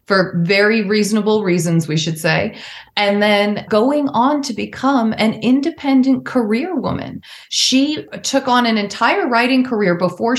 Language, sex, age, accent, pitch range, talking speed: English, female, 30-49, American, 185-260 Hz, 145 wpm